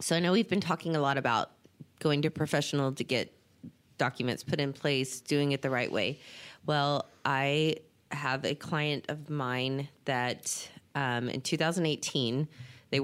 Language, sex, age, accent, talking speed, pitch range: English, female, 20-39, American, 155 wpm, 135-160 Hz